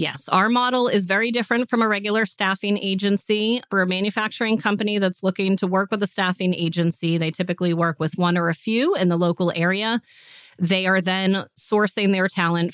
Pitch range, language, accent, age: 170-215 Hz, English, American, 30-49